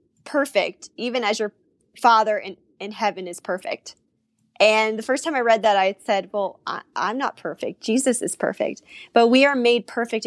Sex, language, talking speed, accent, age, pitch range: female, English, 180 wpm, American, 10-29, 195-240 Hz